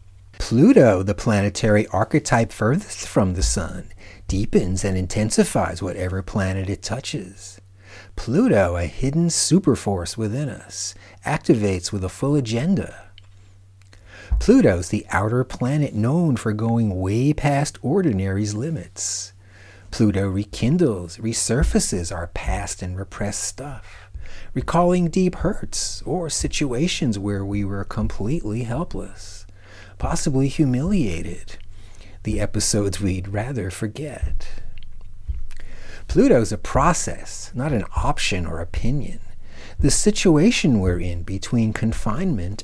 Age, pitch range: 40-59, 95-120 Hz